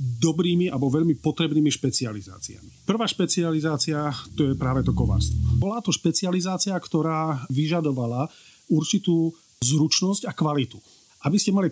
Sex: male